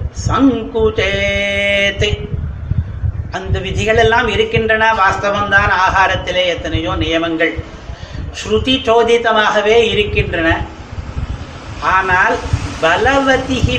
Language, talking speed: Tamil, 50 wpm